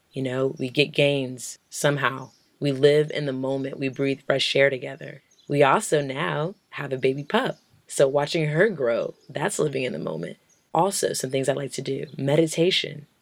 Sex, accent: female, American